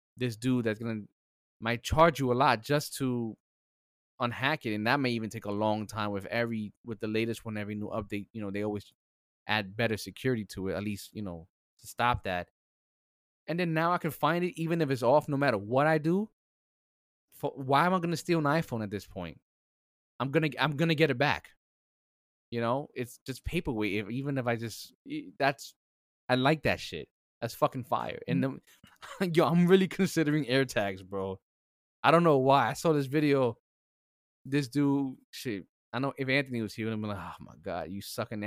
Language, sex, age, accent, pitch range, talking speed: English, male, 20-39, American, 105-145 Hz, 205 wpm